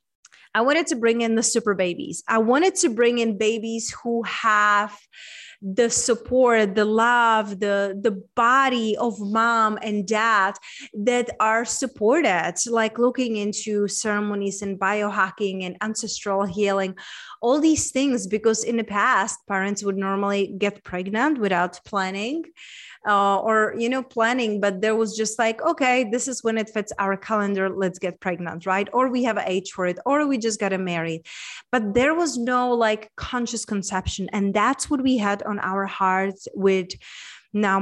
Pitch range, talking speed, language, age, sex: 195-235 Hz, 165 wpm, English, 20-39, female